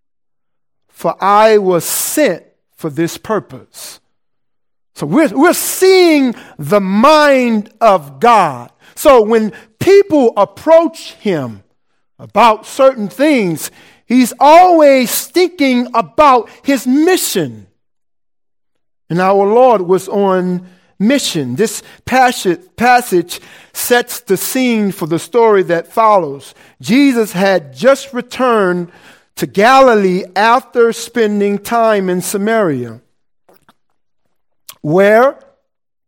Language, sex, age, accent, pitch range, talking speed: English, male, 50-69, American, 190-255 Hz, 95 wpm